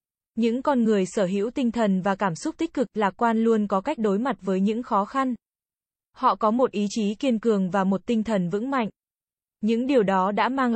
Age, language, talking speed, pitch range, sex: 20-39, Vietnamese, 230 wpm, 200-250 Hz, female